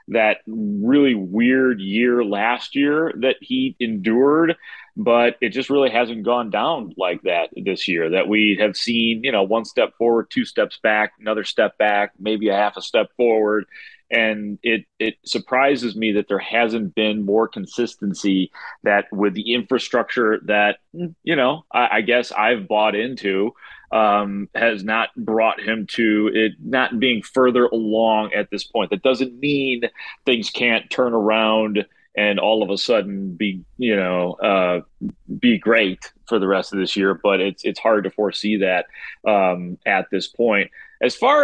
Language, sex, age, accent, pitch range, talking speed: English, male, 30-49, American, 105-125 Hz, 170 wpm